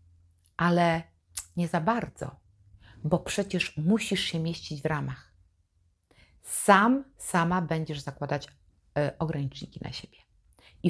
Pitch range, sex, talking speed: 135-180 Hz, female, 105 wpm